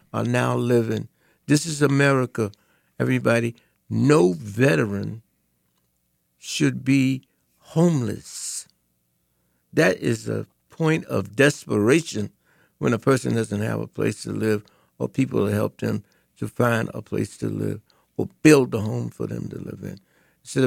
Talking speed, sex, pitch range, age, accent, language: 140 wpm, male, 105-140 Hz, 60-79, American, English